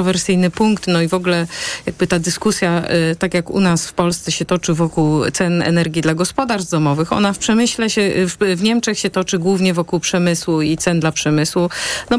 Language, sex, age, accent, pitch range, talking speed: Polish, female, 40-59, native, 160-200 Hz, 190 wpm